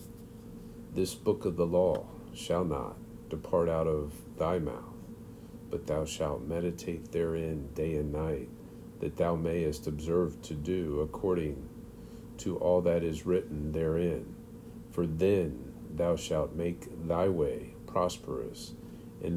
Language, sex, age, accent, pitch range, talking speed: English, male, 50-69, American, 80-90 Hz, 130 wpm